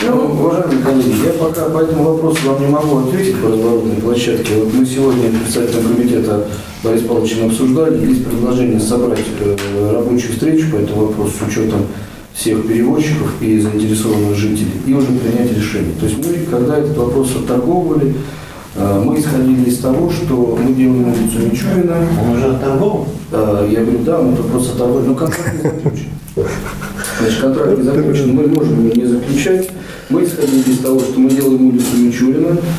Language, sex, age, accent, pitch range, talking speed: Russian, male, 40-59, native, 110-135 Hz, 160 wpm